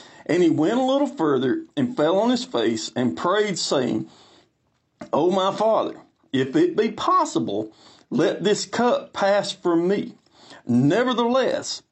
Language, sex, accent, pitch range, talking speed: English, male, American, 165-265 Hz, 140 wpm